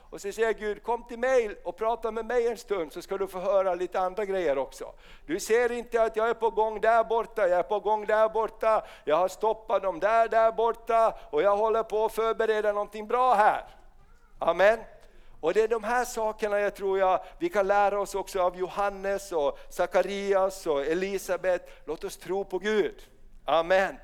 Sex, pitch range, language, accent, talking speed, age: male, 185-225 Hz, Swedish, native, 200 wpm, 50-69